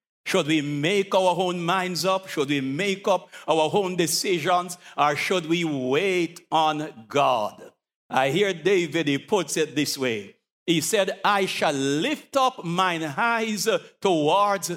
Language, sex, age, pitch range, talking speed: English, male, 60-79, 165-235 Hz, 150 wpm